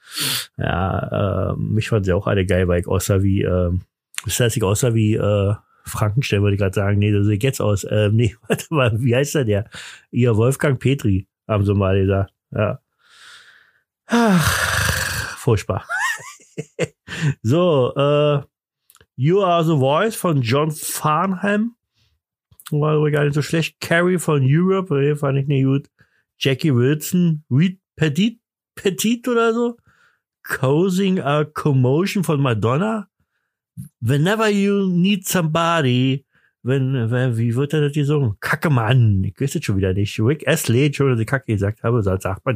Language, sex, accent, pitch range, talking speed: German, male, German, 110-155 Hz, 155 wpm